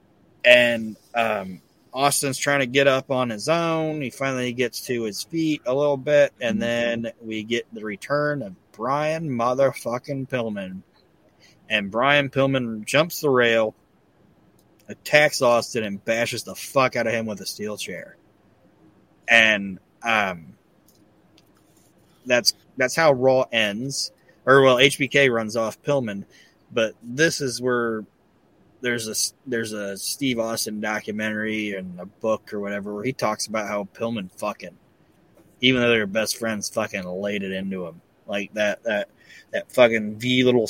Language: English